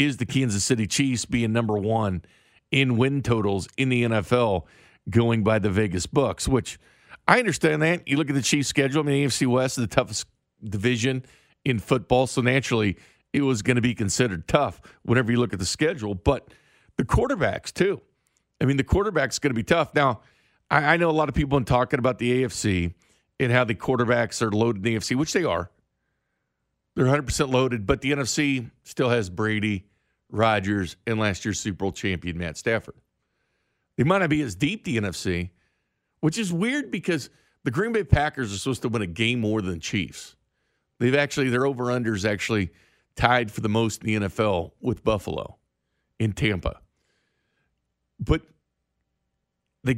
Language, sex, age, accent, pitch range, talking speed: English, male, 50-69, American, 105-135 Hz, 185 wpm